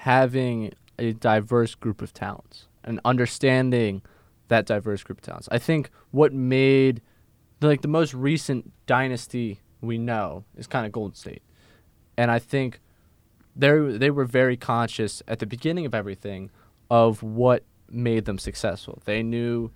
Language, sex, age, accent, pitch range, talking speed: English, male, 20-39, American, 110-135 Hz, 150 wpm